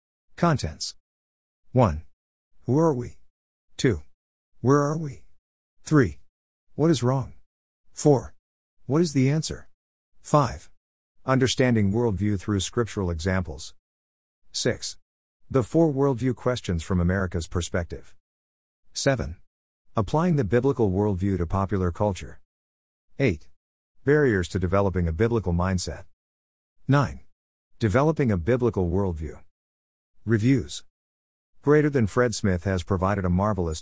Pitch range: 80-120 Hz